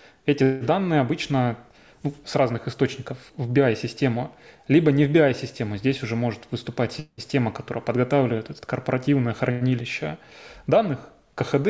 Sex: male